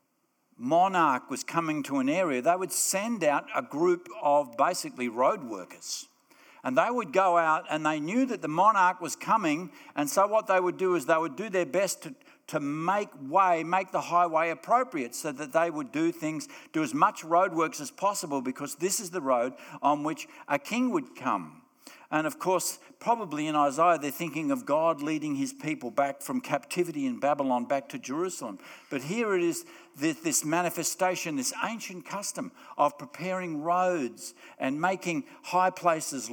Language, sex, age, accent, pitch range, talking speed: English, male, 60-79, Australian, 155-260 Hz, 180 wpm